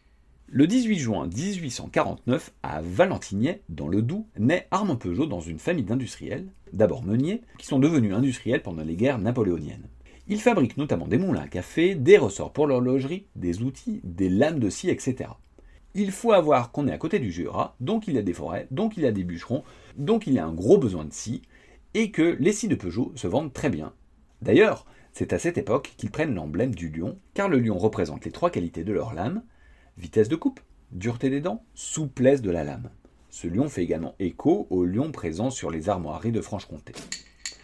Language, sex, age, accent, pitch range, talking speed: French, male, 40-59, French, 85-145 Hz, 200 wpm